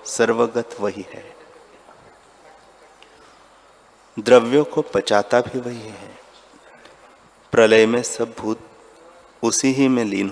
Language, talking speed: Hindi, 100 wpm